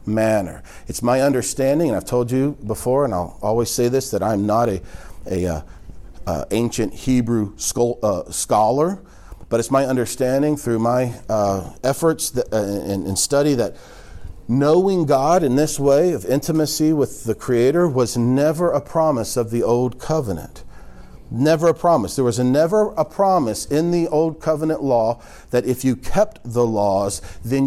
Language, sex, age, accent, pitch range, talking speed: English, male, 40-59, American, 105-140 Hz, 160 wpm